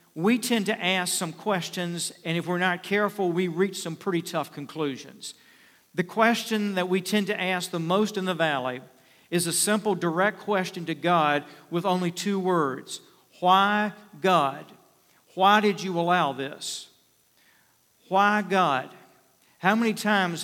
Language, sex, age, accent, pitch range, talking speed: English, male, 50-69, American, 160-185 Hz, 155 wpm